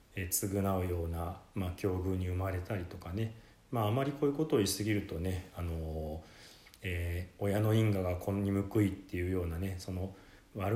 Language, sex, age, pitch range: Japanese, male, 40-59, 90-115 Hz